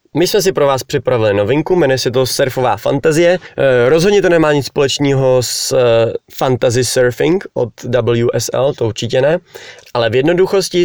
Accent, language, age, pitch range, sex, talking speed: native, Czech, 20-39, 120-150 Hz, male, 155 wpm